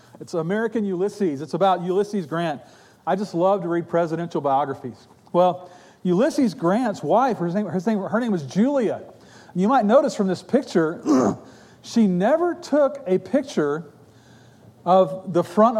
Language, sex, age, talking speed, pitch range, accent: English, male, 40-59, 135 wpm, 165-215 Hz, American